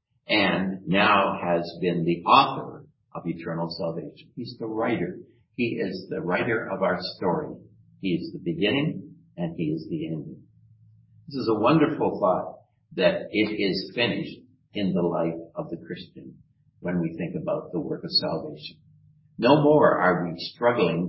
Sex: male